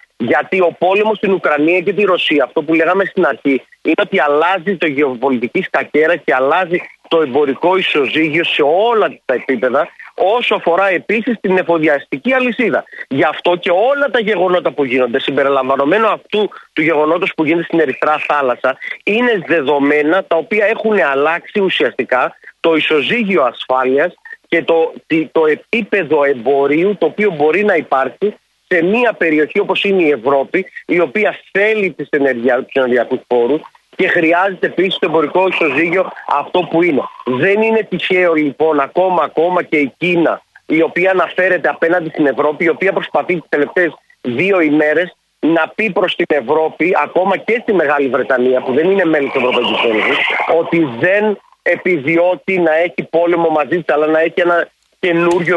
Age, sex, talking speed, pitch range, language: 40-59, male, 160 wpm, 150-190 Hz, Greek